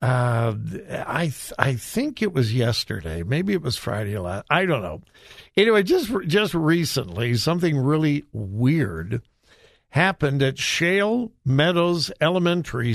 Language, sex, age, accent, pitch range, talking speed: English, male, 60-79, American, 135-200 Hz, 135 wpm